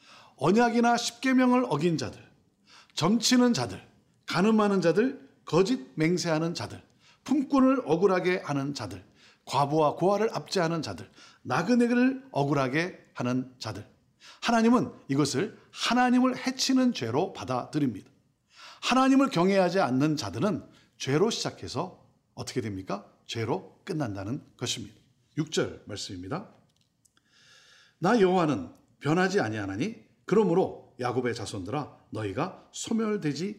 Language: Korean